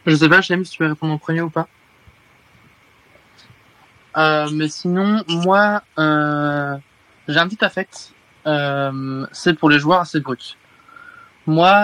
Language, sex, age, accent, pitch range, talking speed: French, male, 20-39, French, 150-185 Hz, 145 wpm